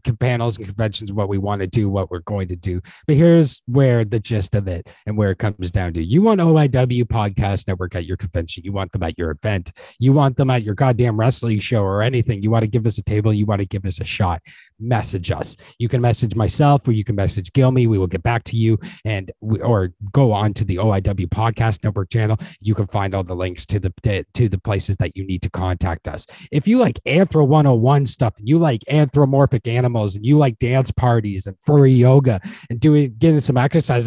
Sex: male